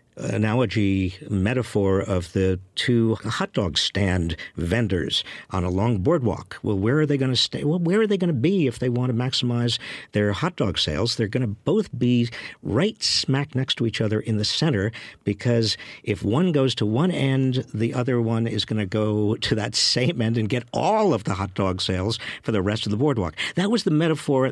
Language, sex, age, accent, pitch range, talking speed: English, male, 50-69, American, 105-140 Hz, 210 wpm